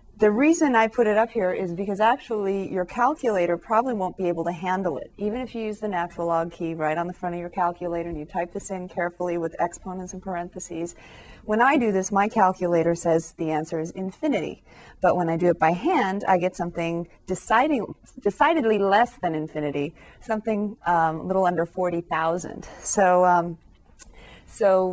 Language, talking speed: English, 190 wpm